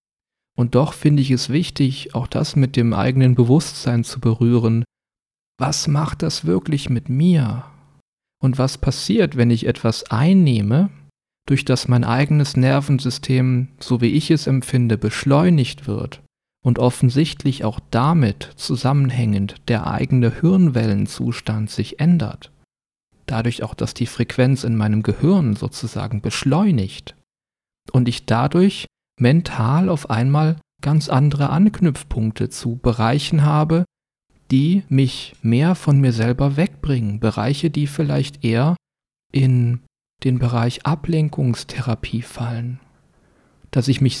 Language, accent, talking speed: German, German, 120 wpm